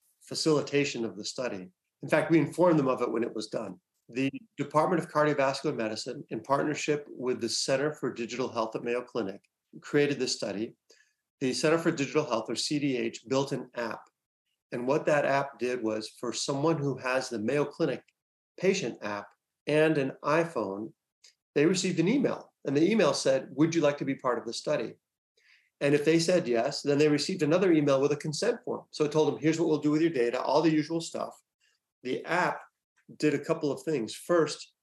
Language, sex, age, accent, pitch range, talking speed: English, male, 40-59, American, 130-155 Hz, 200 wpm